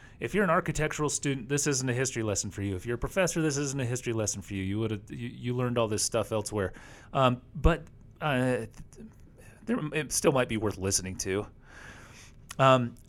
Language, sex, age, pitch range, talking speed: English, male, 30-49, 105-130 Hz, 205 wpm